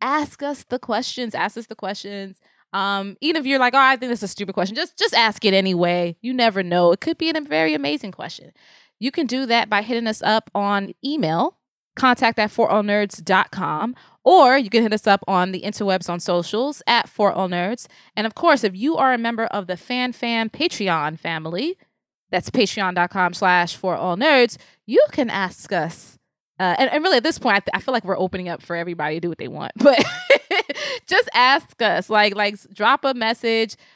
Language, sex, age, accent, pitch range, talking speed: English, female, 20-39, American, 190-260 Hz, 200 wpm